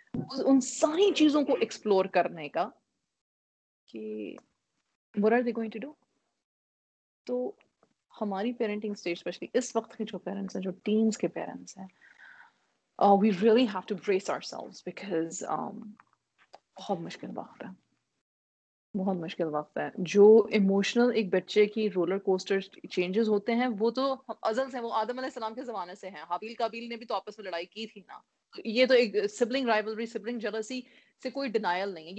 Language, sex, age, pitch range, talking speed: Urdu, female, 30-49, 195-255 Hz, 80 wpm